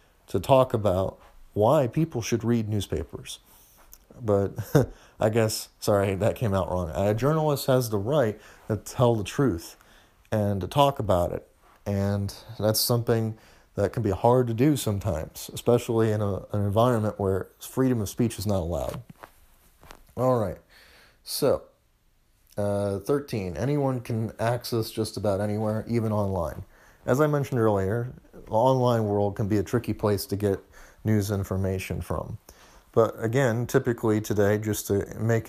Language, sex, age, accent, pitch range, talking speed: English, male, 30-49, American, 100-120 Hz, 150 wpm